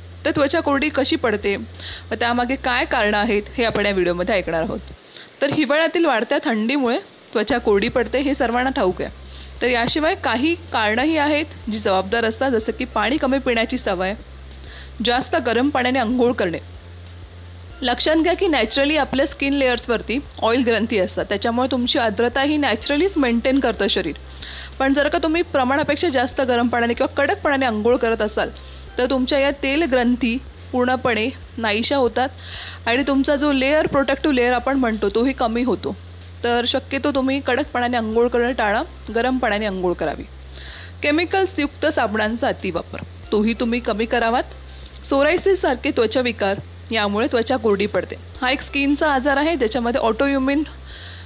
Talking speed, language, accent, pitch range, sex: 110 wpm, English, Indian, 210-275 Hz, female